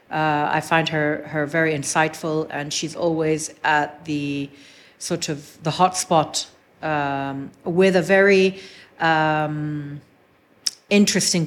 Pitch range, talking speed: 155-195 Hz, 120 wpm